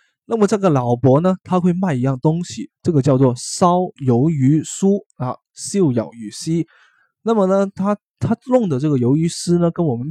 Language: Chinese